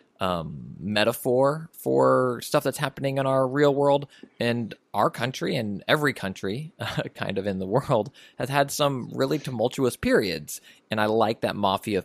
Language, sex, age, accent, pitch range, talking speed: English, male, 20-39, American, 95-130 Hz, 165 wpm